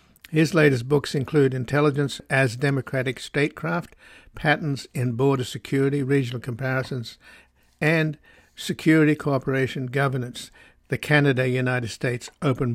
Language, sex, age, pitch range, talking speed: English, male, 60-79, 125-145 Hz, 105 wpm